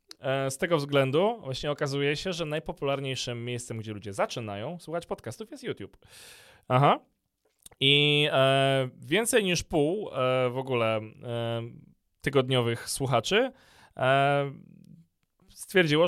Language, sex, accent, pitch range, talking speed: Polish, male, native, 120-150 Hz, 95 wpm